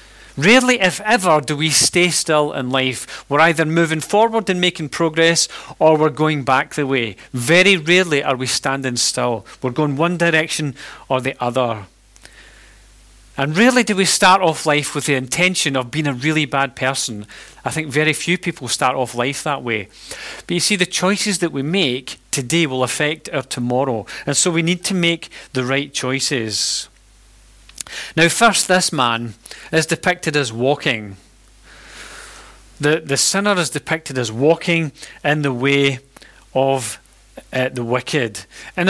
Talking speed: 165 wpm